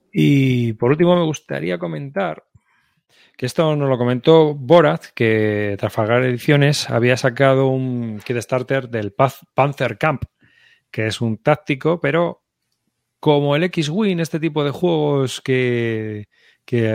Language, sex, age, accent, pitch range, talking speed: Spanish, male, 30-49, Spanish, 115-145 Hz, 135 wpm